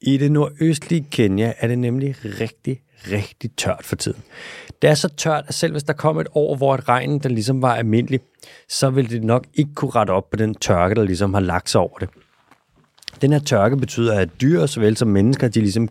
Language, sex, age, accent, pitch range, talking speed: Danish, male, 30-49, native, 105-140 Hz, 220 wpm